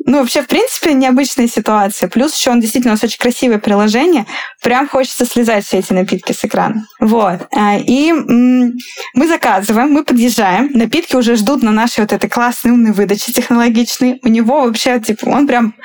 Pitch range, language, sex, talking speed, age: 215-255 Hz, Russian, female, 180 wpm, 20-39